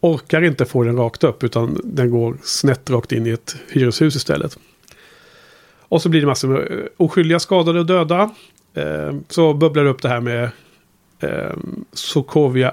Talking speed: 160 wpm